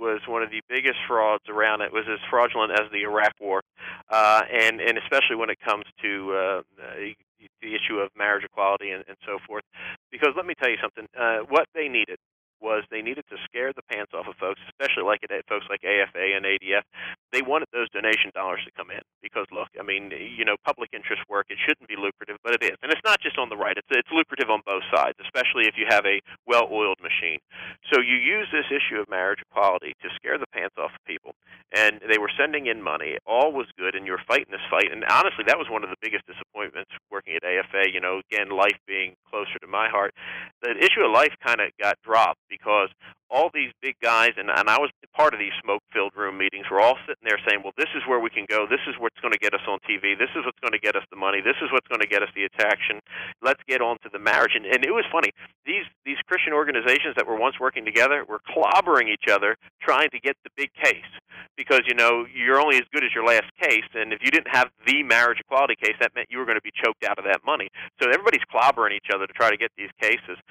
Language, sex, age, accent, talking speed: English, male, 40-59, American, 250 wpm